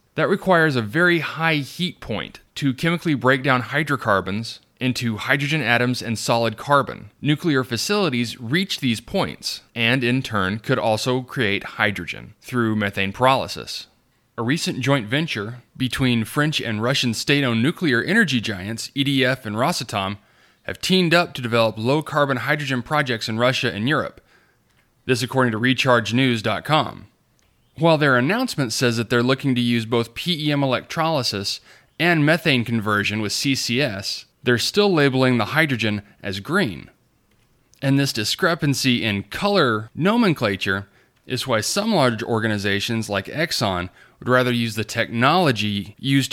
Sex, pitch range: male, 110-145 Hz